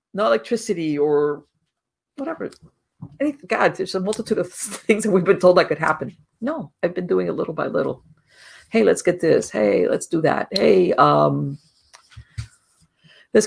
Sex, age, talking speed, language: female, 50-69, 160 wpm, English